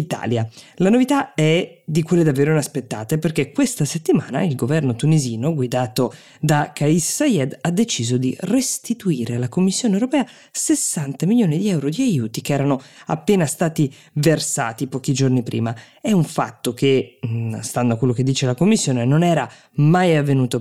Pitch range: 135-170 Hz